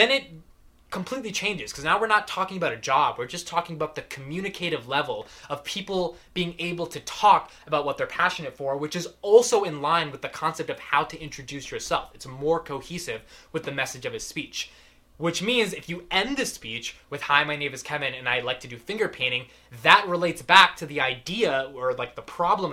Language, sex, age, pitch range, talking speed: English, male, 20-39, 125-170 Hz, 215 wpm